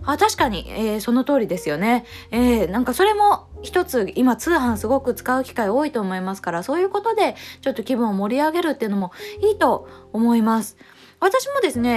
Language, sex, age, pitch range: Japanese, female, 20-39, 195-300 Hz